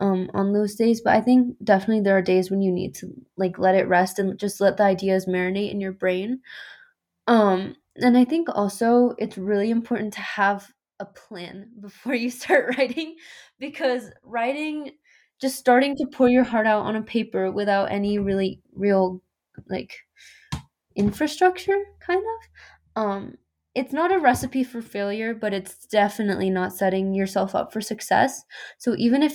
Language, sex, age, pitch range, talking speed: English, female, 20-39, 195-250 Hz, 170 wpm